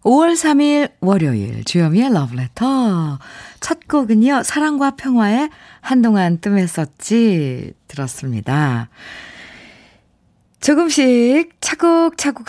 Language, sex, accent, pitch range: Korean, female, native, 145-240 Hz